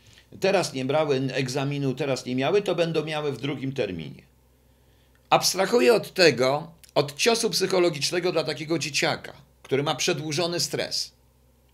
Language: Polish